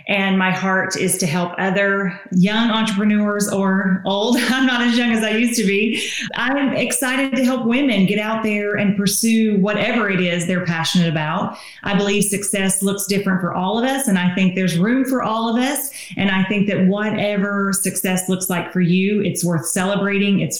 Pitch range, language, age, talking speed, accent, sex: 185-220 Hz, English, 30-49, 200 wpm, American, female